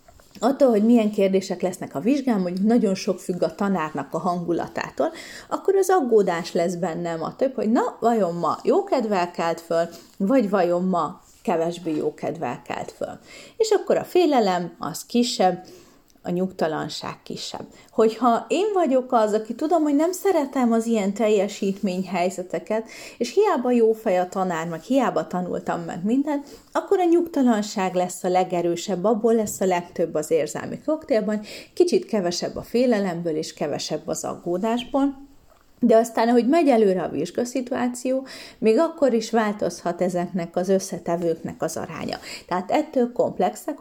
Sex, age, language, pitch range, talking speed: female, 30-49, Hungarian, 180-255 Hz, 145 wpm